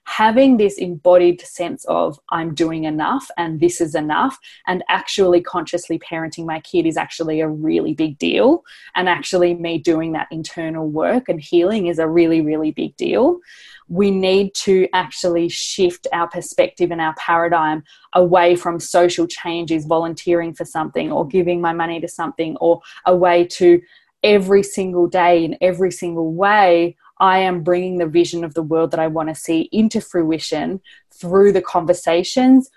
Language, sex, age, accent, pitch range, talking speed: English, female, 20-39, Australian, 165-195 Hz, 165 wpm